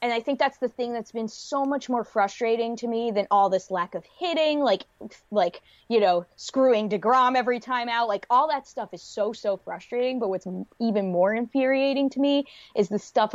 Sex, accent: female, American